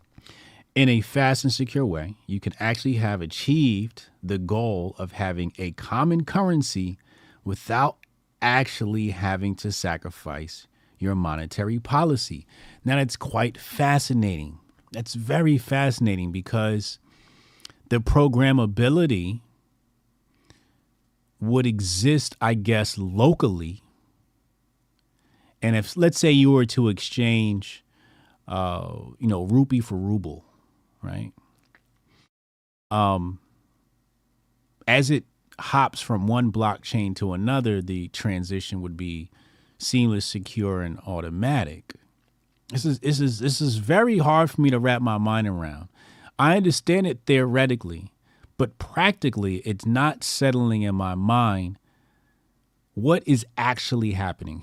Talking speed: 115 wpm